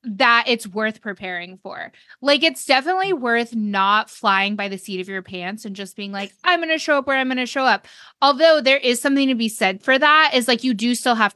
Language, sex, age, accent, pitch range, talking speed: English, female, 20-39, American, 190-255 Hz, 240 wpm